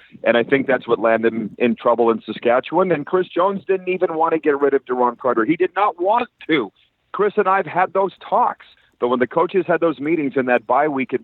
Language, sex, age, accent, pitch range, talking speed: English, male, 40-59, American, 120-175 Hz, 250 wpm